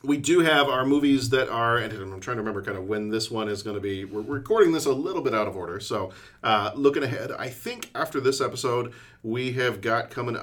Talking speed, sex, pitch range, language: 245 wpm, male, 105-130 Hz, English